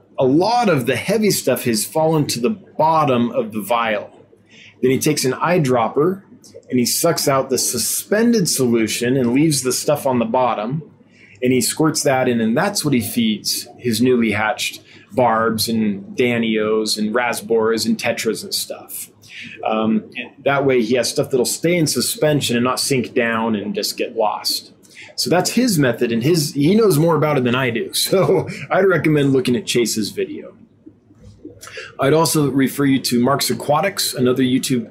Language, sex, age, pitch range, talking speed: English, male, 30-49, 120-170 Hz, 175 wpm